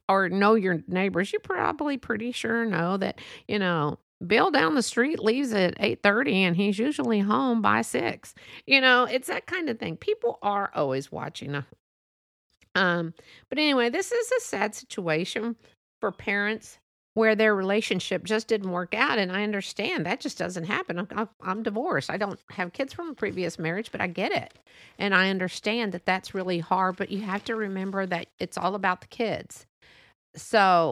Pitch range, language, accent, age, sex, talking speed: 175-225 Hz, English, American, 50-69, female, 180 wpm